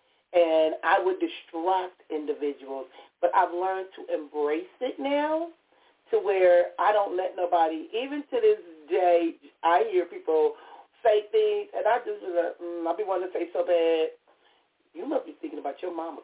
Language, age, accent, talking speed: English, 40-59, American, 165 wpm